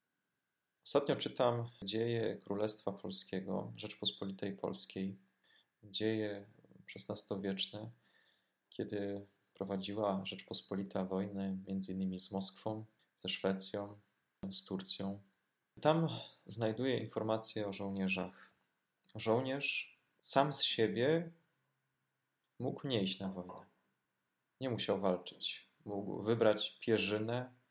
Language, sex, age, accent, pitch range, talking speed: Polish, male, 20-39, native, 95-115 Hz, 85 wpm